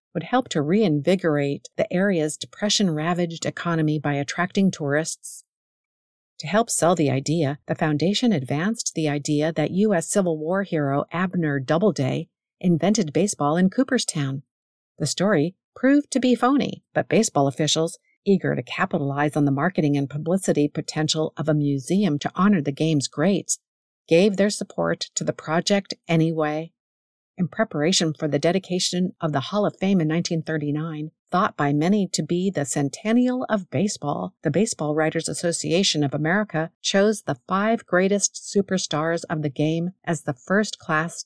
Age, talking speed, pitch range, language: 50-69, 150 wpm, 150-200 Hz, English